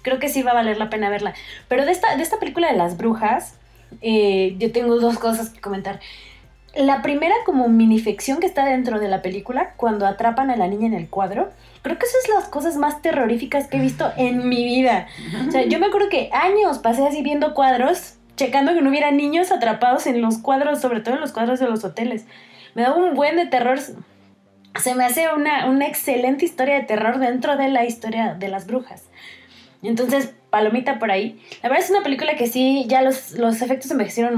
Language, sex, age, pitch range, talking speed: Spanish, female, 20-39, 210-270 Hz, 215 wpm